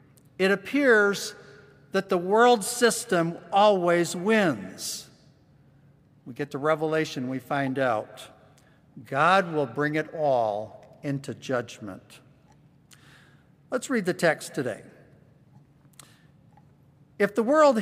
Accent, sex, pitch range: American, male, 150-215 Hz